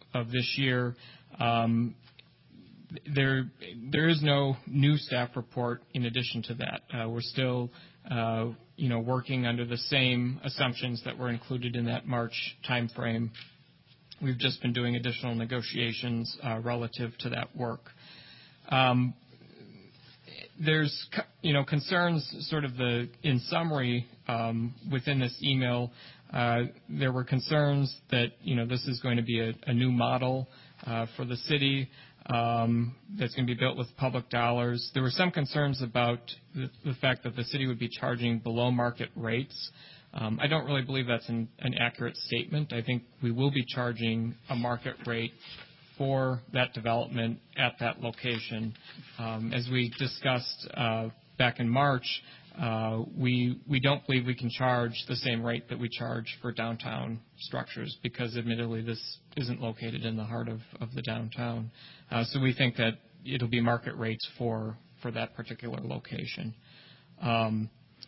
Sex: male